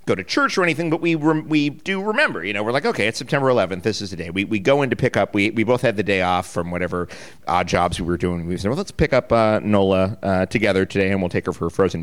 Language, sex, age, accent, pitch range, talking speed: English, male, 50-69, American, 90-130 Hz, 310 wpm